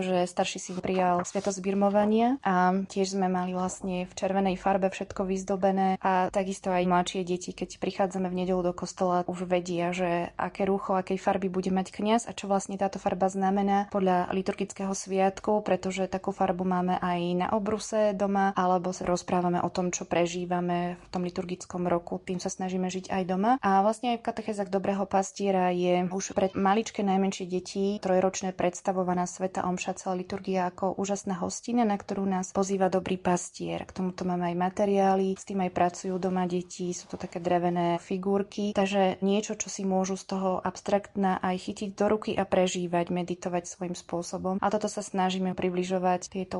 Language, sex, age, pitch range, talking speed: Slovak, female, 20-39, 180-195 Hz, 175 wpm